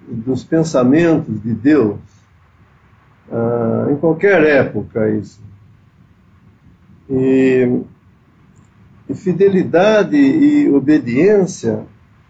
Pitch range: 110-165 Hz